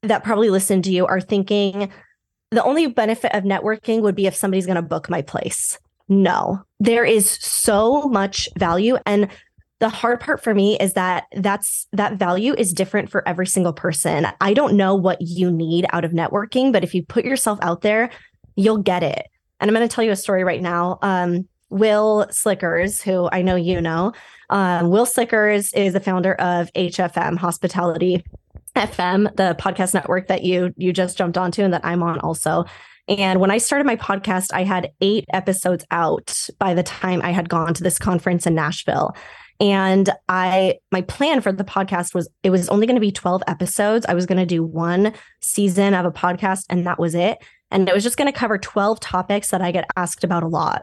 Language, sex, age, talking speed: English, female, 20-39, 205 wpm